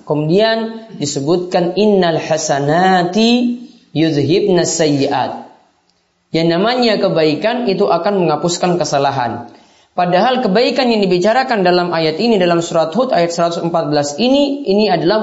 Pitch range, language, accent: 165-220 Hz, Indonesian, native